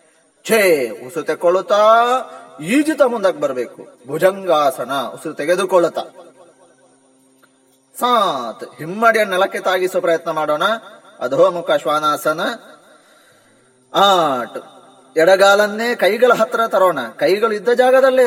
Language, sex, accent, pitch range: Kannada, male, native, 160-230 Hz